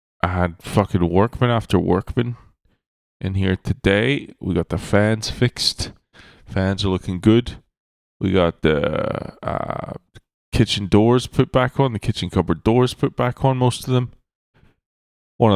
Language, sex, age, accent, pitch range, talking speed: English, male, 20-39, American, 85-105 Hz, 145 wpm